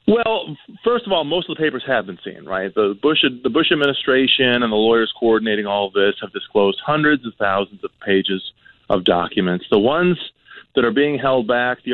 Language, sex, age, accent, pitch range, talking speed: English, male, 30-49, American, 105-140 Hz, 195 wpm